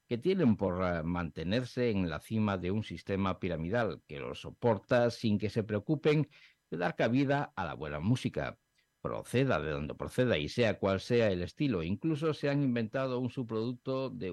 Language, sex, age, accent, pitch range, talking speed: Spanish, male, 60-79, Spanish, 100-130 Hz, 175 wpm